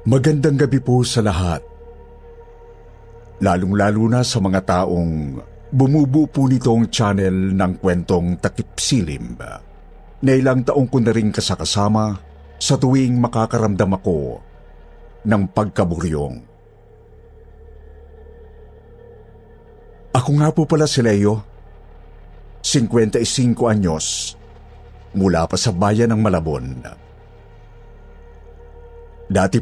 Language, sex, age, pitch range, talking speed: Filipino, male, 50-69, 90-120 Hz, 90 wpm